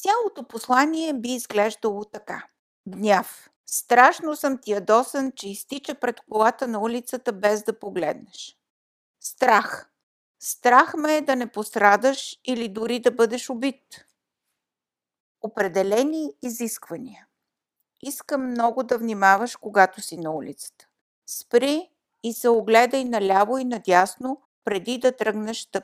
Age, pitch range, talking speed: 50-69, 210-275 Hz, 120 wpm